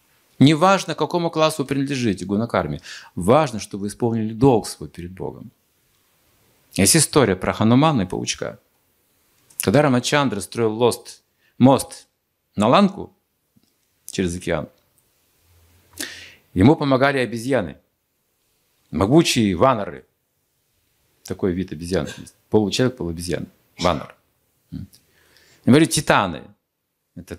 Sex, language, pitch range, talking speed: male, Russian, 100-140 Hz, 90 wpm